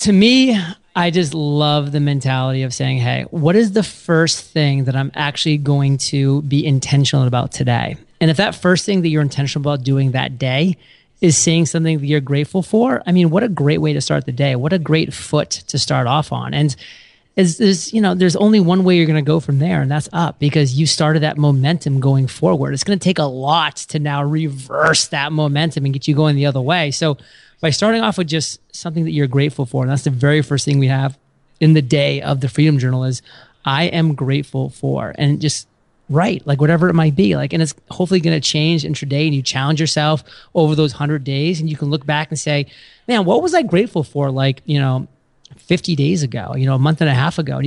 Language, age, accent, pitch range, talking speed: English, 30-49, American, 140-165 Hz, 235 wpm